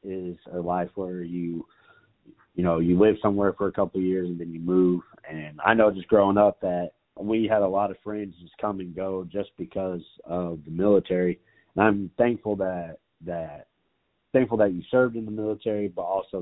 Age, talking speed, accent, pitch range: 30-49, 200 wpm, American, 90-100 Hz